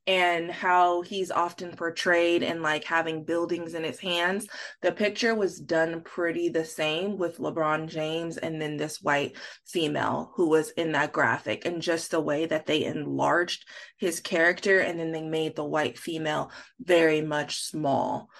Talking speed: 165 wpm